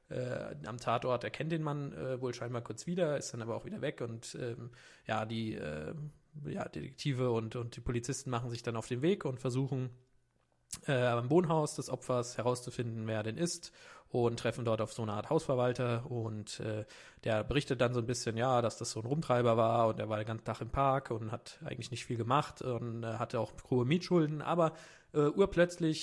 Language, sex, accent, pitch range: German, male, German, 115-135 Hz